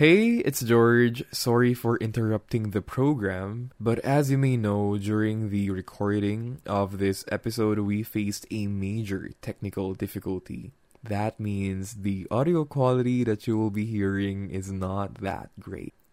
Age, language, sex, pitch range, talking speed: 20-39, Filipino, male, 100-120 Hz, 145 wpm